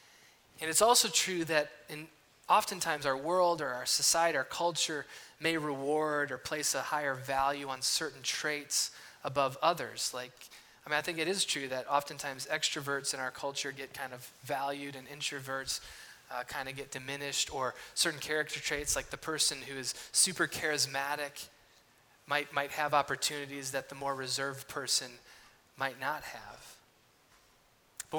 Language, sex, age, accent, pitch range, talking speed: English, male, 20-39, American, 135-155 Hz, 160 wpm